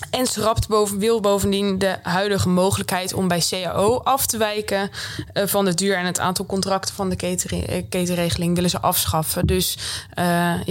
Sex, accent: female, Dutch